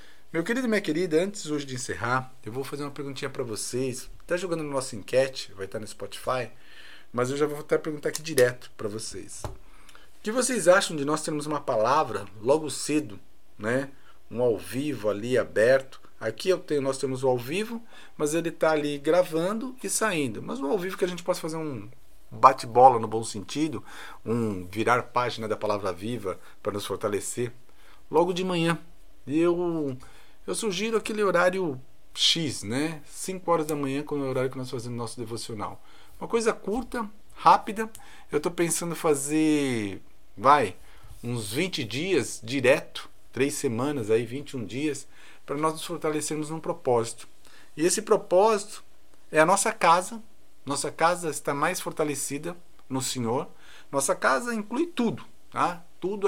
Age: 50-69